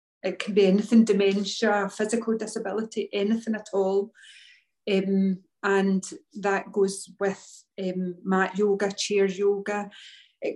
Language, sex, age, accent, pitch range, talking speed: English, female, 40-59, British, 200-230 Hz, 120 wpm